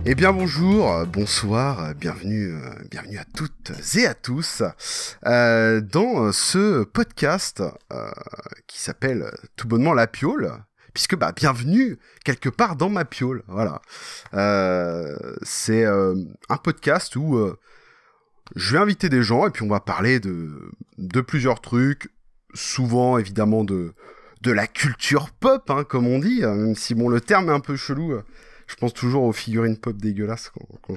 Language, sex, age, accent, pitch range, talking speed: French, male, 30-49, French, 105-140 Hz, 155 wpm